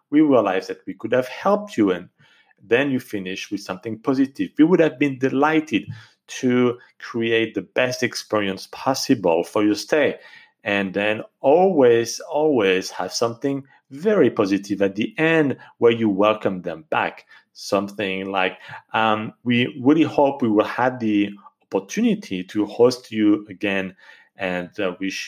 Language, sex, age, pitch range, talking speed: English, male, 40-59, 100-135 Hz, 150 wpm